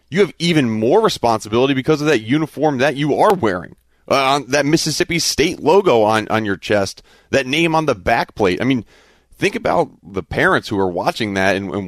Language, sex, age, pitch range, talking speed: English, male, 30-49, 110-145 Hz, 200 wpm